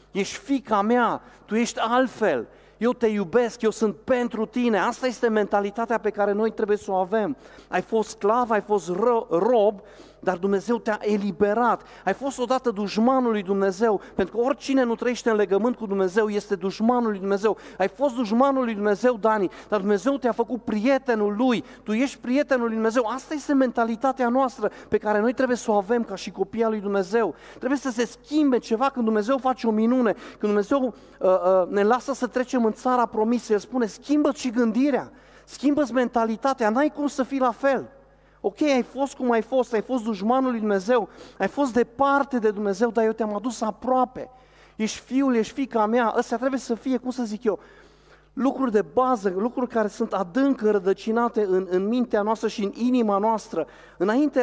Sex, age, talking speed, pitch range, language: male, 40-59, 185 wpm, 210-255 Hz, Romanian